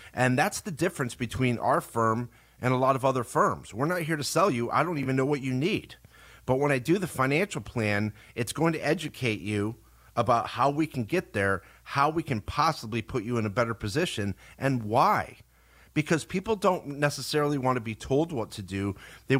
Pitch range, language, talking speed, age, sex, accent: 110-140 Hz, English, 210 wpm, 40-59, male, American